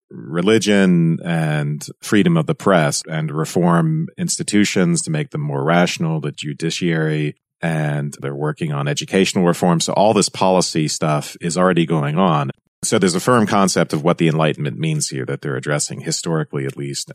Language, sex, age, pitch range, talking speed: English, male, 40-59, 75-105 Hz, 170 wpm